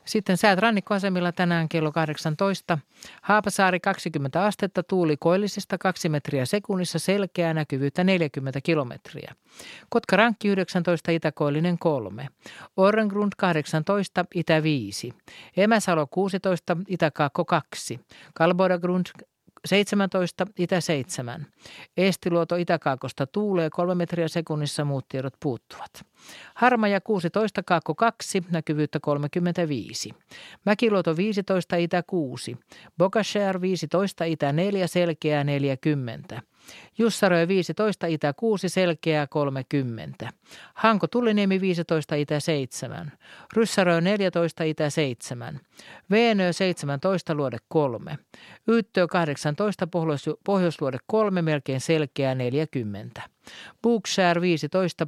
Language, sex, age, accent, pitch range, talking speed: Finnish, male, 50-69, native, 150-190 Hz, 95 wpm